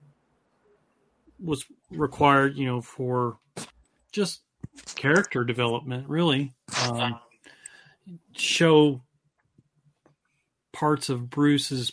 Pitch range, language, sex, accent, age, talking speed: 125-150 Hz, English, male, American, 40-59, 70 wpm